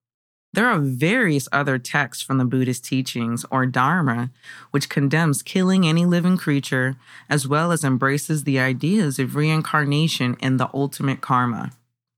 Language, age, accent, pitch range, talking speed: English, 20-39, American, 130-165 Hz, 145 wpm